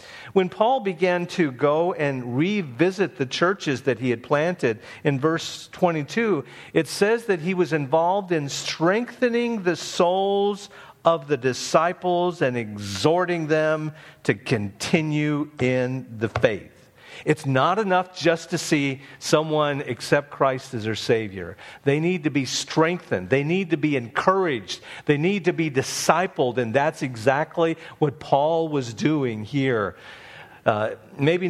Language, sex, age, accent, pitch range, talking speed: English, male, 50-69, American, 125-170 Hz, 140 wpm